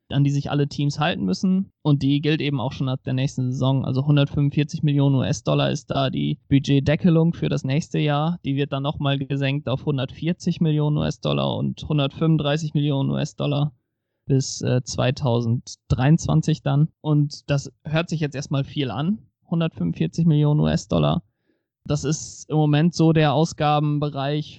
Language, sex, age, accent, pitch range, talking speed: German, male, 20-39, German, 135-150 Hz, 155 wpm